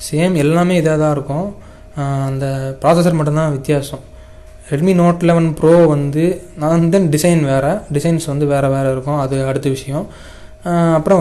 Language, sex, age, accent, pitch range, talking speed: Tamil, male, 20-39, native, 140-160 Hz, 140 wpm